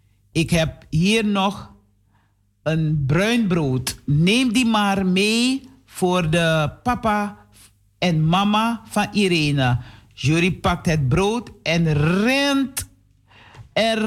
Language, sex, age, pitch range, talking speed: Dutch, male, 50-69, 145-225 Hz, 100 wpm